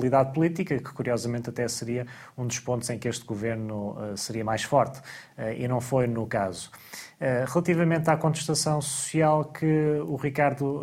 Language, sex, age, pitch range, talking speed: Portuguese, male, 20-39, 120-150 Hz, 155 wpm